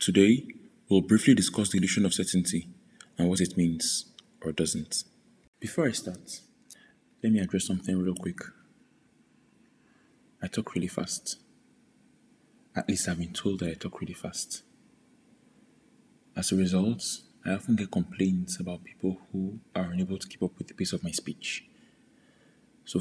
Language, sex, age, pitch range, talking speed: English, male, 20-39, 90-110 Hz, 155 wpm